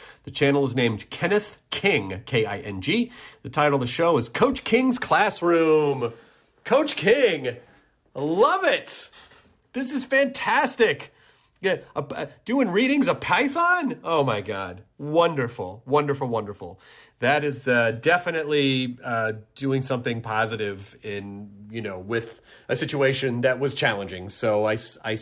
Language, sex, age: English, male, 30-49